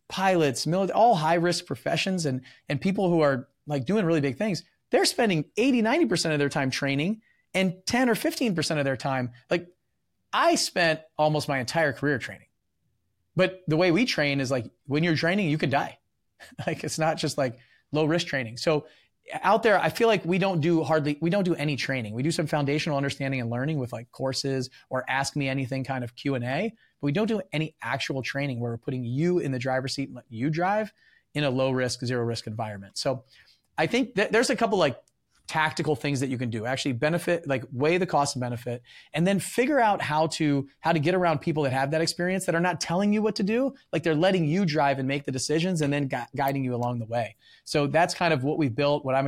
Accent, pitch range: American, 135-175 Hz